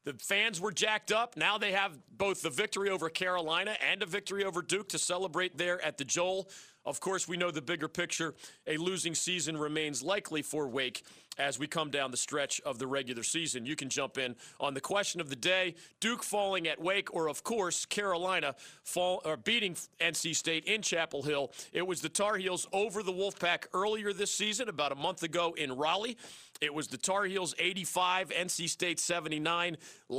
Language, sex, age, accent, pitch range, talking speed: English, male, 40-59, American, 155-195 Hz, 195 wpm